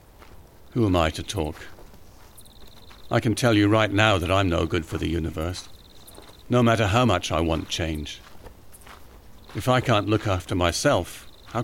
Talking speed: 165 wpm